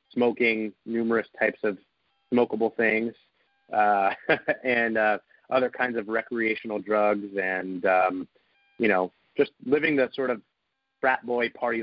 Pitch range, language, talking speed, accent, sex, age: 100-125 Hz, English, 130 wpm, American, male, 30-49